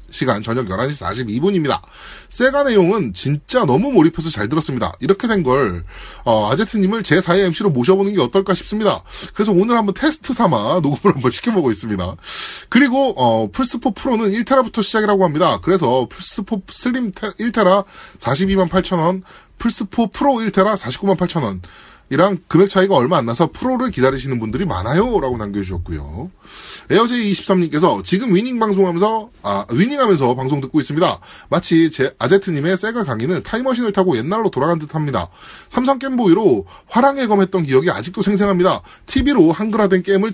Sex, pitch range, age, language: male, 160-220 Hz, 20-39, Korean